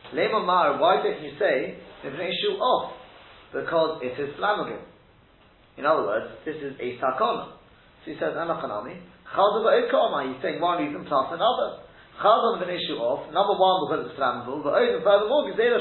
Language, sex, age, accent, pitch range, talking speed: English, male, 30-49, British, 135-200 Hz, 115 wpm